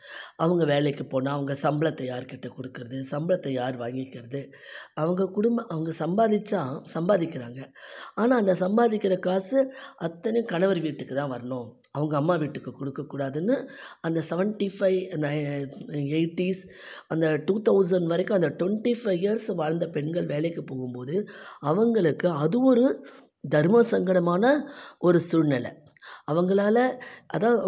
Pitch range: 140-195 Hz